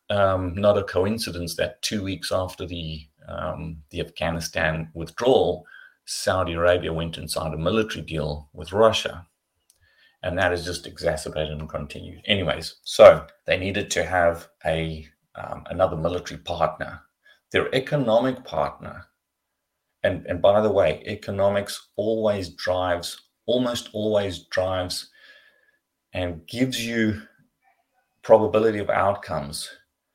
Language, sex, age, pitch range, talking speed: English, male, 30-49, 85-105 Hz, 120 wpm